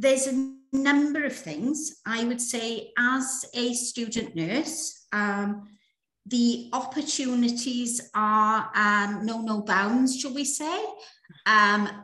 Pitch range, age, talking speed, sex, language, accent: 230-265 Hz, 50-69, 120 wpm, female, English, British